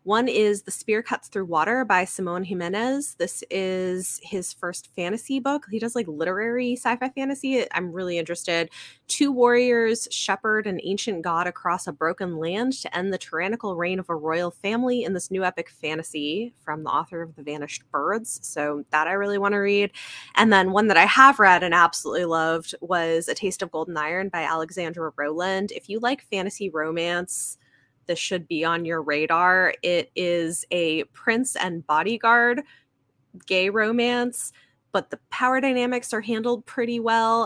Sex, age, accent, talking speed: female, 20-39, American, 175 wpm